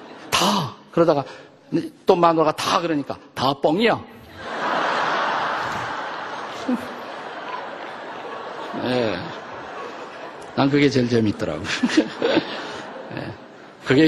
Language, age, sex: Korean, 50-69, male